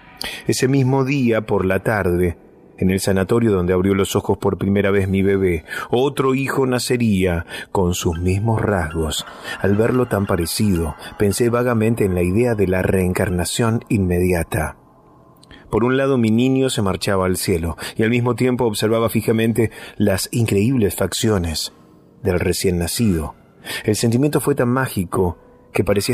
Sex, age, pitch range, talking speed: male, 30-49, 95-120 Hz, 150 wpm